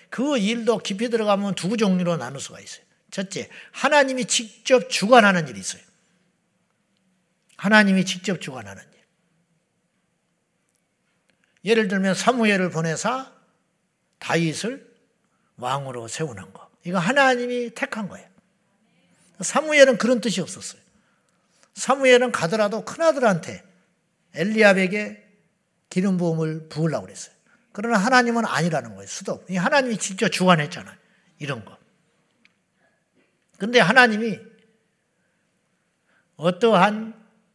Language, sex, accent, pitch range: Korean, male, Japanese, 170-220 Hz